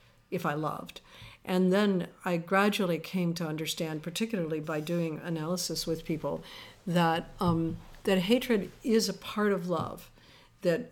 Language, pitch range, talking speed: English, 160-195 Hz, 145 wpm